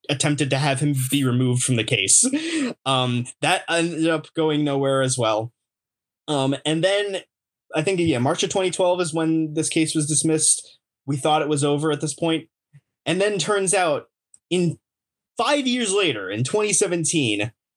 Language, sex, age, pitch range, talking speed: English, male, 20-39, 135-170 Hz, 170 wpm